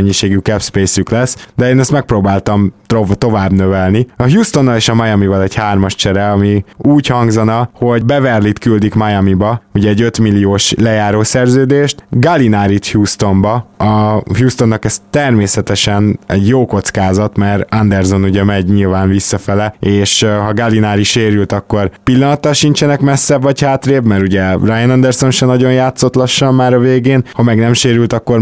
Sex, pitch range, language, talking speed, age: male, 100-130 Hz, Hungarian, 150 wpm, 20-39